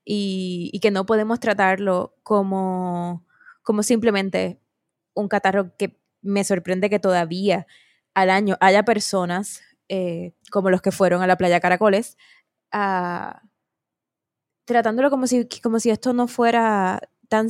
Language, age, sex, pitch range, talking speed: Spanish, 20-39, female, 185-220 Hz, 125 wpm